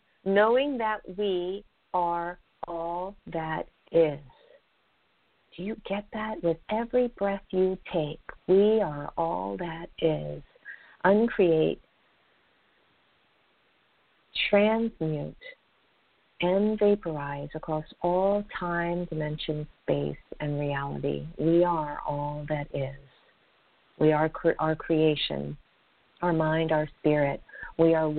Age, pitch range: 50-69, 155-185 Hz